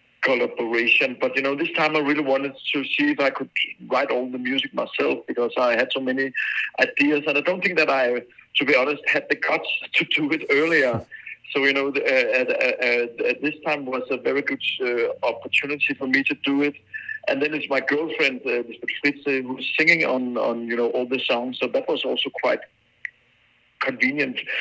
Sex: male